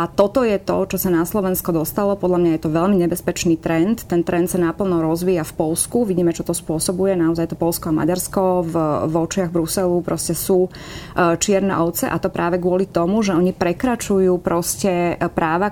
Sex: female